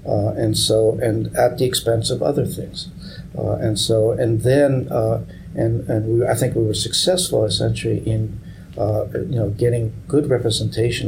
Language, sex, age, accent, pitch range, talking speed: English, male, 60-79, American, 110-125 Hz, 175 wpm